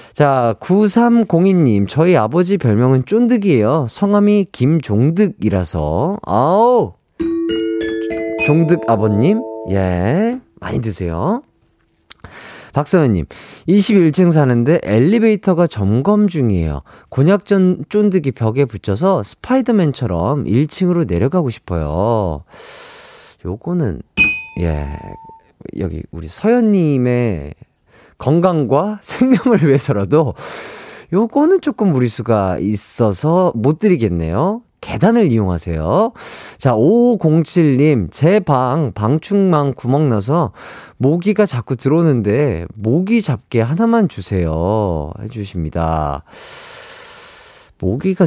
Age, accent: 40-59, native